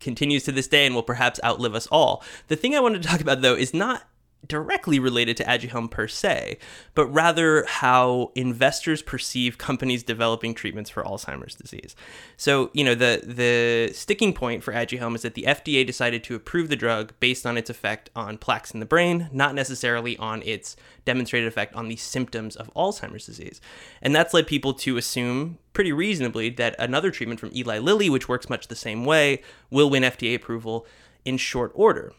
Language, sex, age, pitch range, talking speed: English, male, 20-39, 120-145 Hz, 190 wpm